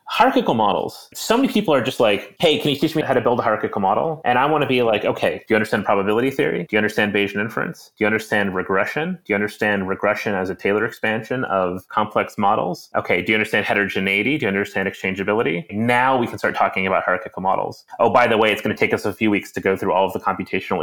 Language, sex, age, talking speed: English, male, 30-49, 250 wpm